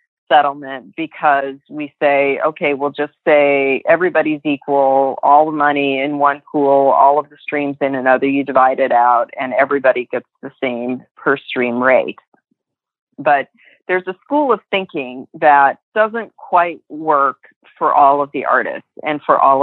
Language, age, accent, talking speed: English, 40-59, American, 160 wpm